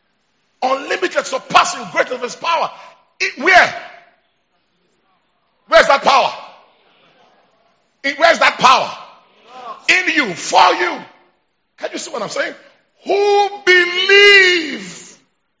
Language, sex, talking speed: English, male, 105 wpm